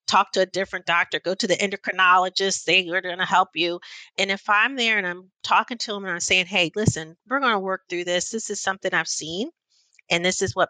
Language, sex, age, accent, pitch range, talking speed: English, female, 40-59, American, 170-200 Hz, 245 wpm